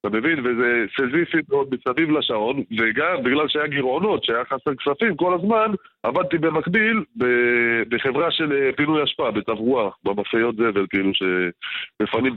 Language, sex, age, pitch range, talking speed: Hebrew, male, 20-39, 115-160 Hz, 130 wpm